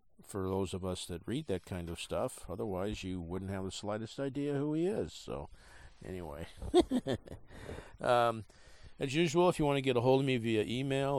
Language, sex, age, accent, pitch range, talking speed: English, male, 50-69, American, 90-120 Hz, 195 wpm